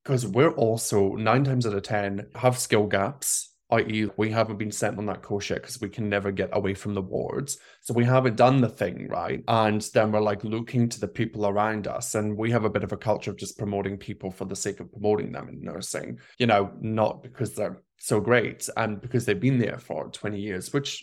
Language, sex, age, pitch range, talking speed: English, male, 20-39, 105-125 Hz, 235 wpm